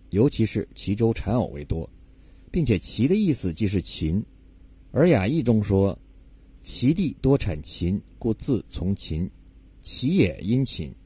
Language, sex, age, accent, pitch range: Chinese, male, 50-69, native, 85-115 Hz